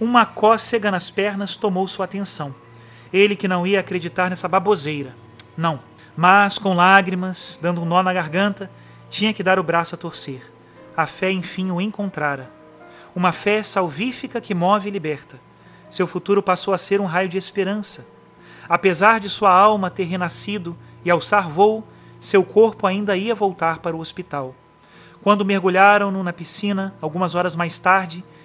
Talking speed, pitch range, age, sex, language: 160 wpm, 170-200 Hz, 30-49, male, Portuguese